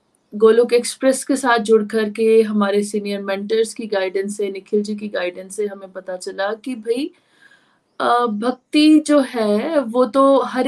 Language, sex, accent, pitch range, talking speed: Hindi, female, native, 205-255 Hz, 155 wpm